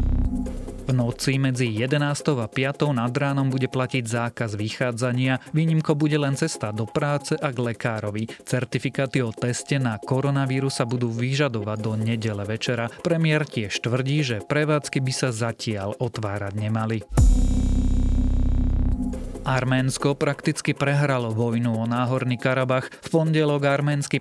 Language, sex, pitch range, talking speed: Slovak, male, 115-140 Hz, 125 wpm